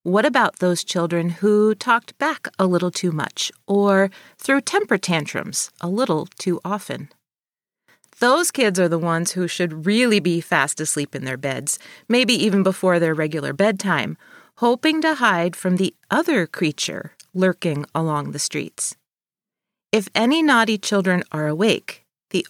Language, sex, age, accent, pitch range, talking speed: English, female, 40-59, American, 170-230 Hz, 150 wpm